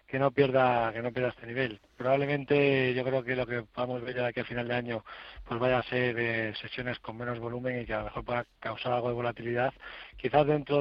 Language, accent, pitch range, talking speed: Spanish, Spanish, 115-130 Hz, 250 wpm